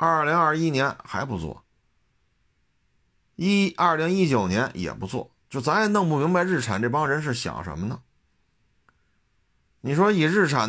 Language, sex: Chinese, male